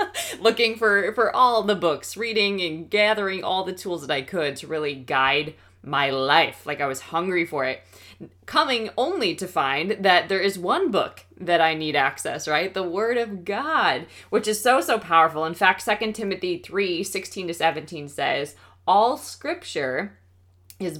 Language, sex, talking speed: English, female, 170 wpm